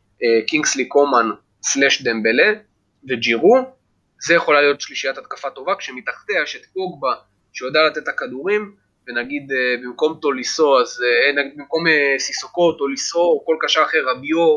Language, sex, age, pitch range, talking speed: Hebrew, male, 20-39, 130-195 Hz, 145 wpm